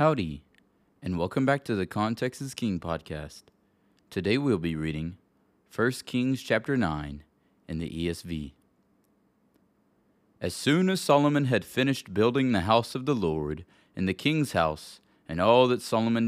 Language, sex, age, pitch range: English, male, 30-49, 85-120 Hz